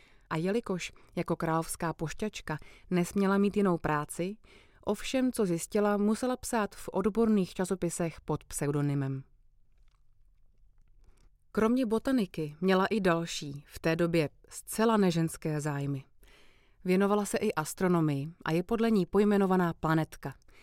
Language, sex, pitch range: Czech, female, 155-205 Hz